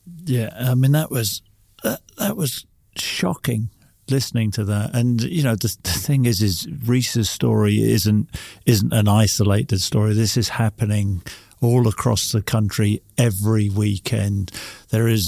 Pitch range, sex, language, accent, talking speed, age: 105-125 Hz, male, English, British, 150 wpm, 50-69